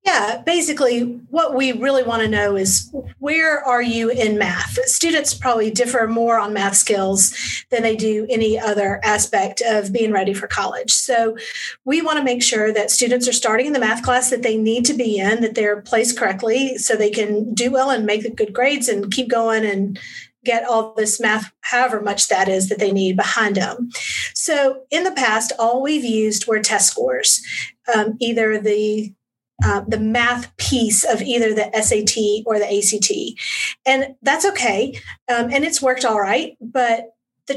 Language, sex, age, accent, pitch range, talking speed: English, female, 40-59, American, 215-255 Hz, 190 wpm